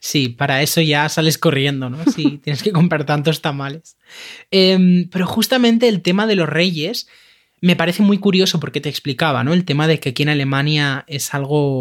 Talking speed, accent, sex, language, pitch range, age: 200 wpm, Spanish, male, Spanish, 145-185 Hz, 20-39